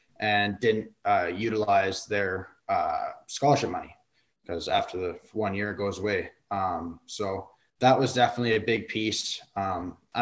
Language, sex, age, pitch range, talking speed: English, male, 20-39, 95-110 Hz, 145 wpm